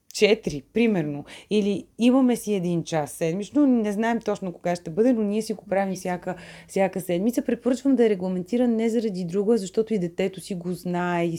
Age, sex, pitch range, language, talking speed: 30-49, female, 170-200 Hz, Bulgarian, 190 wpm